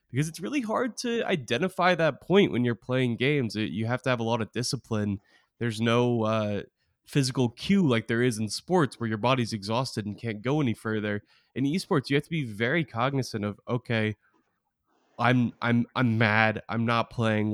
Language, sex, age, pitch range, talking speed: English, male, 20-39, 105-125 Hz, 190 wpm